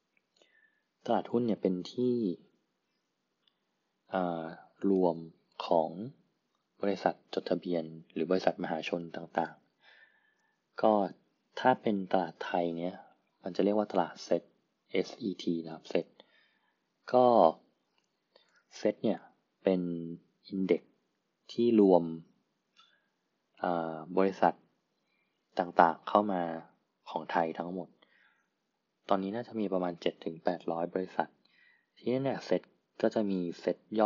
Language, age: Thai, 20-39